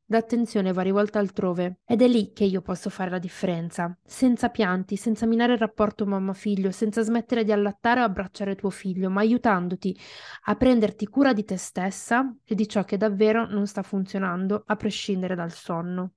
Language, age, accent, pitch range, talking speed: Italian, 20-39, native, 195-230 Hz, 180 wpm